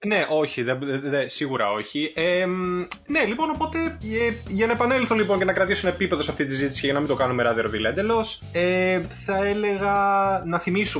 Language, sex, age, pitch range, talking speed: Greek, male, 20-39, 120-165 Hz, 200 wpm